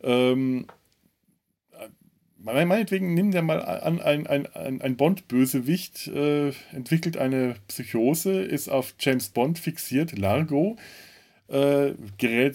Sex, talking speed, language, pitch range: male, 105 wpm, German, 110-150 Hz